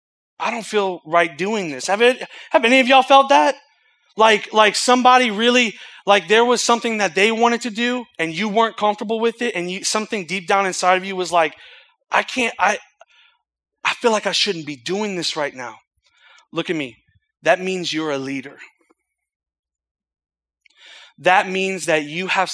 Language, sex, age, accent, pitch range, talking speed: English, male, 30-49, American, 160-215 Hz, 185 wpm